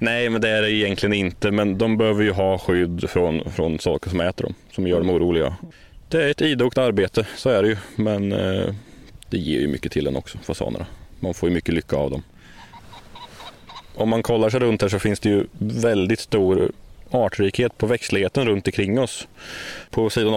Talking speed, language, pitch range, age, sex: 205 wpm, Swedish, 95-115 Hz, 20-39, male